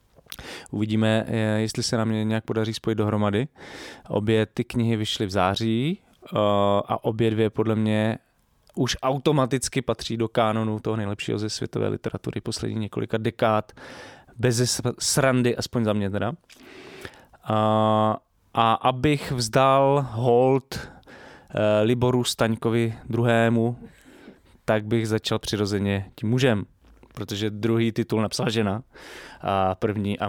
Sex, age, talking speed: male, 20-39, 120 wpm